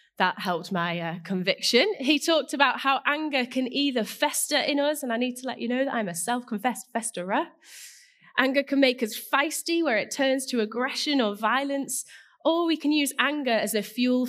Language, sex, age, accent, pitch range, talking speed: English, female, 20-39, British, 195-285 Hz, 195 wpm